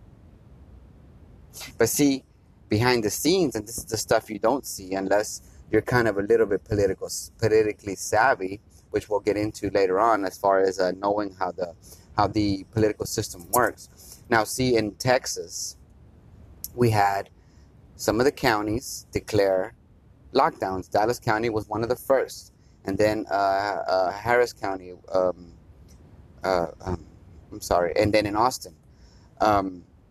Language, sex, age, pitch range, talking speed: English, male, 30-49, 95-120 Hz, 150 wpm